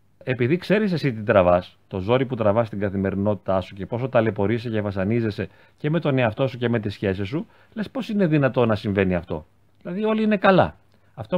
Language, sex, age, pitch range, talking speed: Greek, male, 40-59, 105-145 Hz, 205 wpm